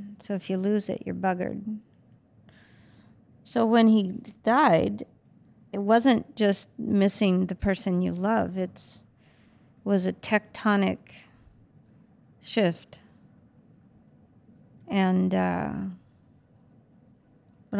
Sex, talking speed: female, 90 wpm